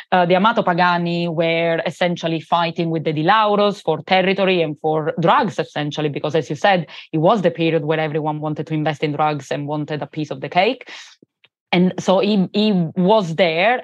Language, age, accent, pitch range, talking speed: English, 20-39, Italian, 165-185 Hz, 190 wpm